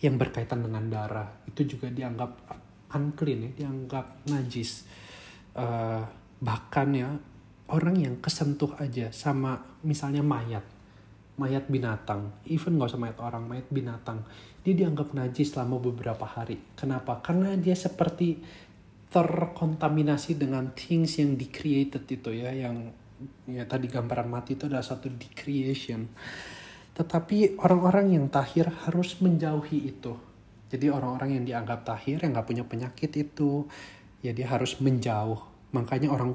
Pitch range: 115-145 Hz